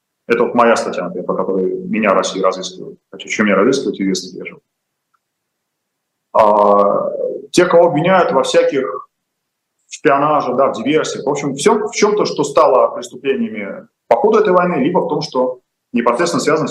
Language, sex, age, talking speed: Russian, male, 30-49, 170 wpm